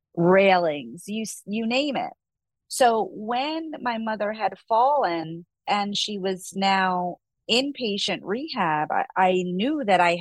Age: 30-49